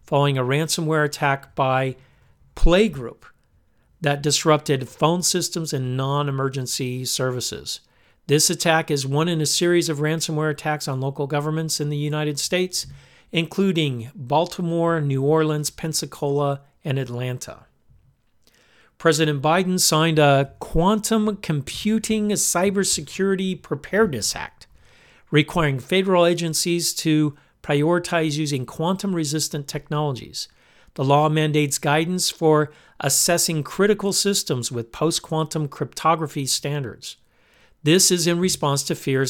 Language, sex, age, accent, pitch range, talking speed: English, male, 50-69, American, 140-170 Hz, 110 wpm